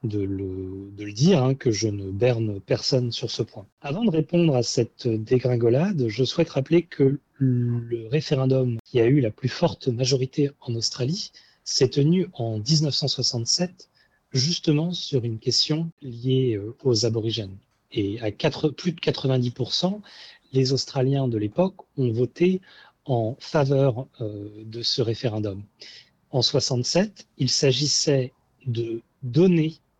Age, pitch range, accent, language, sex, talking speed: 40-59, 120-155 Hz, French, French, male, 140 wpm